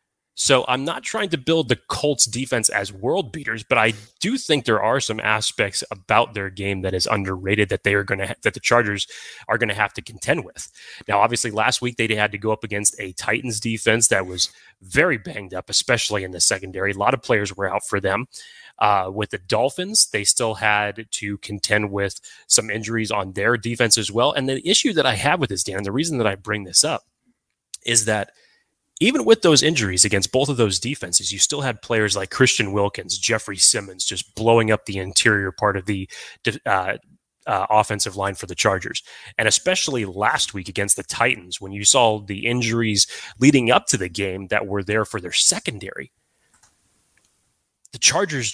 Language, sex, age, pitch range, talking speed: English, male, 30-49, 100-125 Hz, 205 wpm